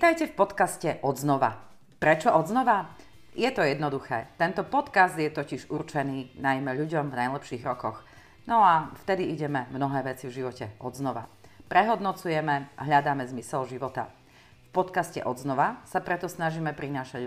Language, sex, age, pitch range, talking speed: Slovak, female, 40-59, 125-165 Hz, 140 wpm